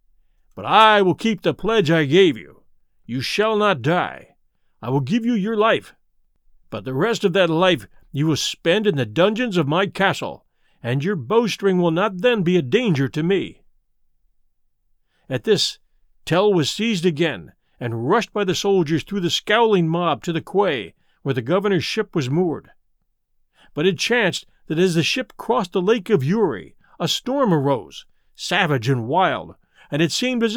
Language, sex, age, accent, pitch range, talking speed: English, male, 50-69, American, 150-210 Hz, 180 wpm